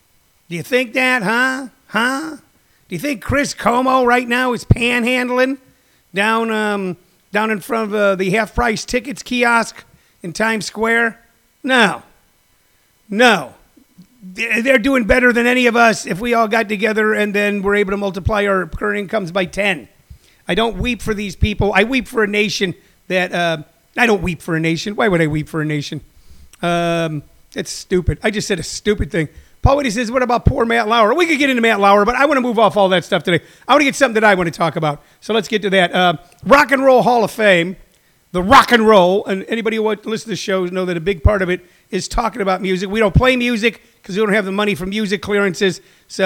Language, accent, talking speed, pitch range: English, American, 225 wpm, 180-230 Hz